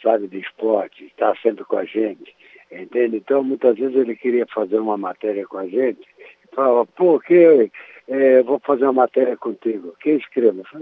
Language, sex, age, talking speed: Portuguese, male, 60-79, 175 wpm